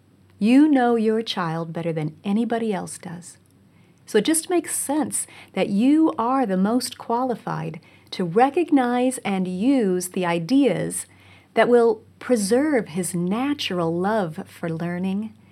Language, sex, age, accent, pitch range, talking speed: English, female, 40-59, American, 165-235 Hz, 130 wpm